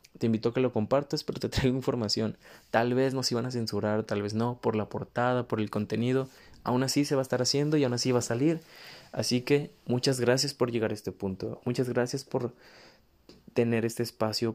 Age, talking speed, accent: 20-39, 220 wpm, Mexican